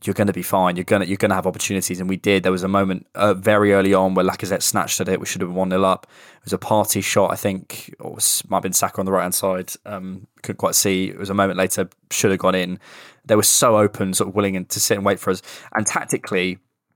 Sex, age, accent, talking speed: male, 20-39, British, 275 wpm